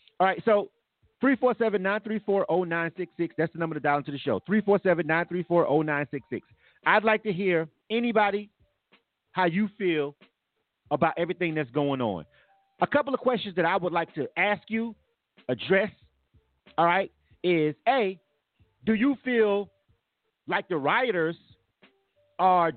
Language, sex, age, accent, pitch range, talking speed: English, male, 40-59, American, 170-240 Hz, 130 wpm